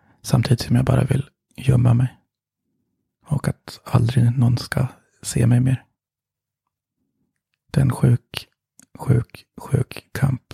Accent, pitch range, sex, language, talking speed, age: native, 115-130 Hz, male, Swedish, 120 wpm, 30-49